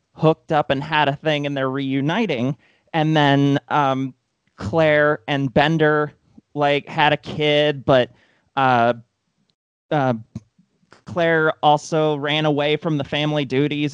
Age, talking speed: 30-49, 130 wpm